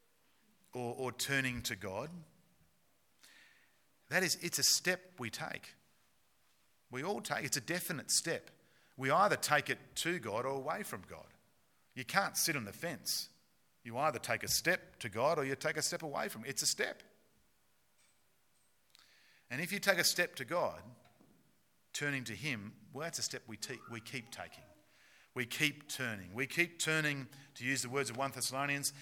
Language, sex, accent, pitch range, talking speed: English, male, Australian, 110-155 Hz, 175 wpm